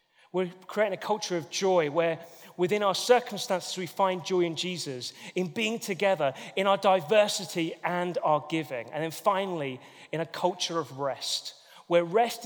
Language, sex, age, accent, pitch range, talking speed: English, male, 30-49, British, 150-215 Hz, 165 wpm